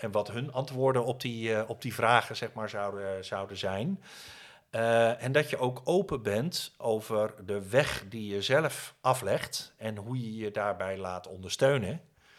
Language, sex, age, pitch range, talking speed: Dutch, male, 40-59, 95-115 Hz, 175 wpm